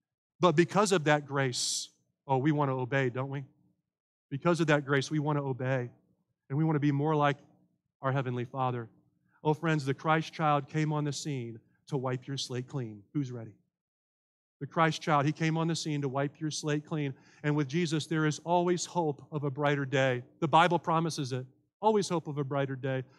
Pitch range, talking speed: 140-180 Hz, 205 wpm